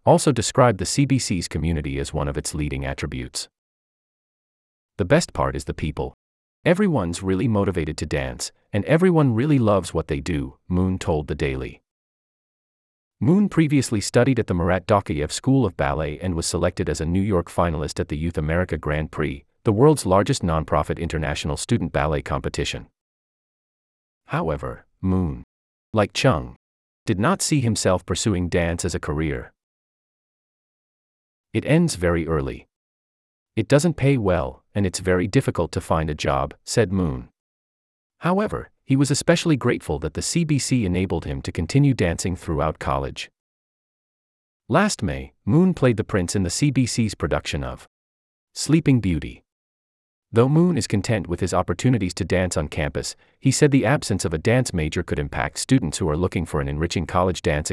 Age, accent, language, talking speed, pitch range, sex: 30-49, American, English, 160 wpm, 75-115 Hz, male